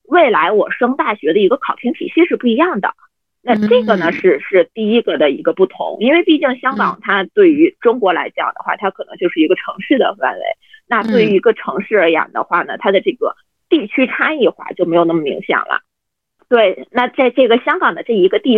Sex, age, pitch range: female, 20-39, 210-335 Hz